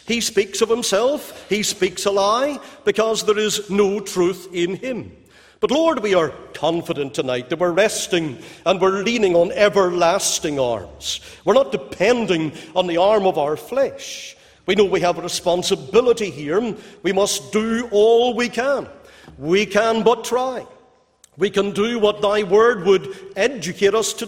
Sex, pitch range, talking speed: male, 175-230 Hz, 165 wpm